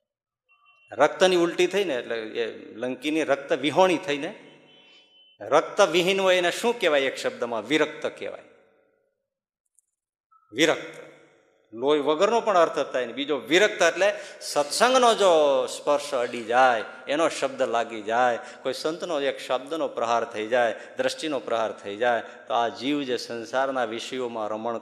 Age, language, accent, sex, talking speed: 50-69, Gujarati, native, male, 135 wpm